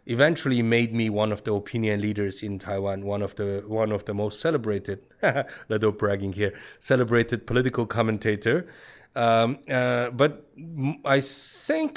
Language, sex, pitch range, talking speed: English, male, 105-130 Hz, 145 wpm